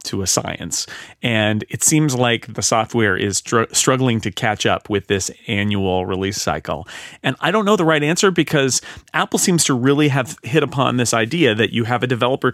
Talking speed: 200 wpm